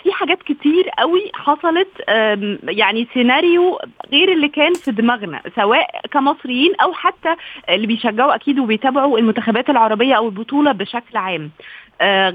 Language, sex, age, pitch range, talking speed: Arabic, female, 20-39, 225-310 Hz, 130 wpm